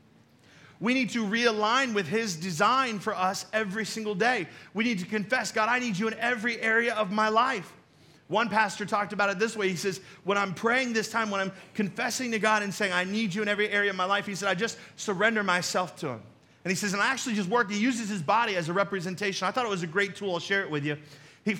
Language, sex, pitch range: English, male, 170-225 Hz